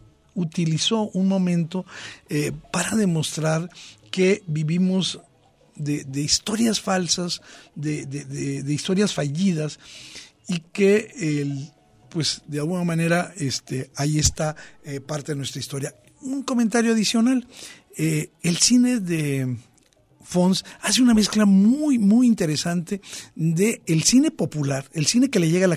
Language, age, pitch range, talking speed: Spanish, 50-69, 140-190 Hz, 130 wpm